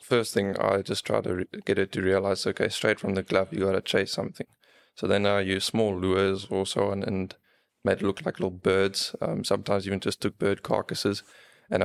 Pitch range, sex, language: 95-105 Hz, male, English